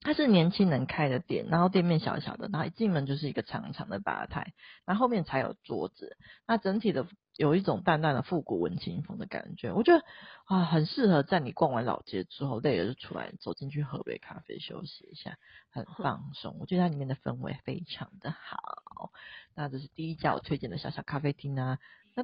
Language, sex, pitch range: Chinese, female, 140-185 Hz